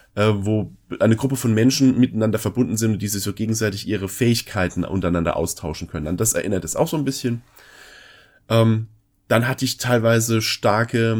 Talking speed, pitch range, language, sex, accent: 160 wpm, 105-135 Hz, German, male, German